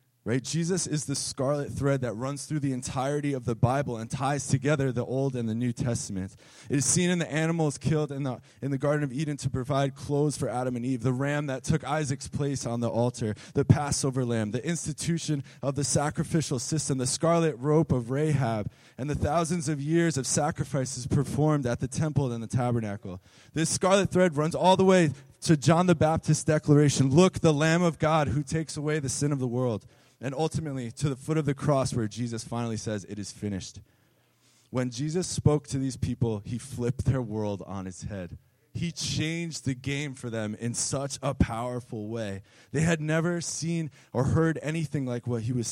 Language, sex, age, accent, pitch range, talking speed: English, male, 20-39, American, 120-150 Hz, 205 wpm